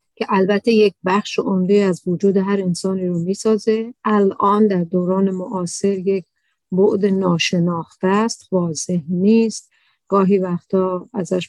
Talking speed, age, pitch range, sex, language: 125 wpm, 50-69, 180-215 Hz, female, Persian